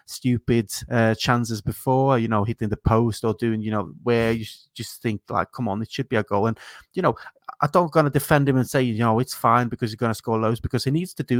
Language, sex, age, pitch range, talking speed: English, male, 30-49, 110-130 Hz, 260 wpm